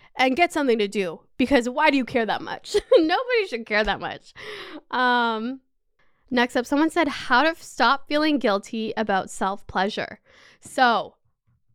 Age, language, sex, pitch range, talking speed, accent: 10-29, English, female, 220-285 Hz, 155 wpm, American